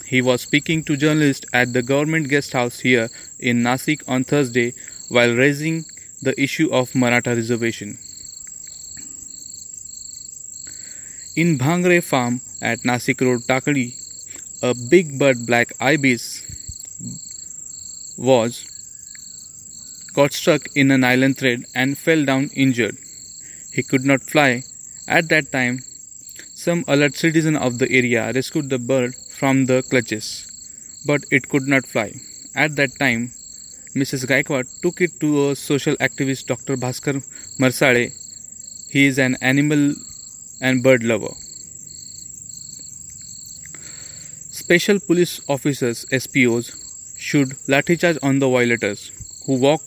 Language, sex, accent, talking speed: Marathi, male, native, 125 wpm